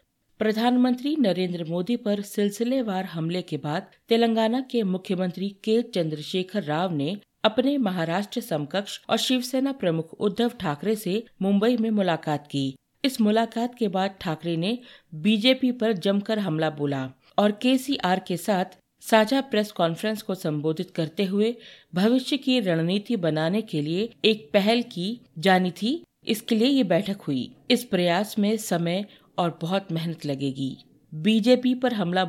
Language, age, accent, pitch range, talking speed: Hindi, 50-69, native, 170-220 Hz, 145 wpm